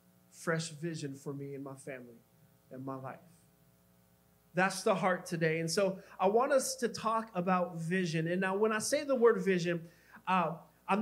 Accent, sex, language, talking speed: American, male, English, 180 wpm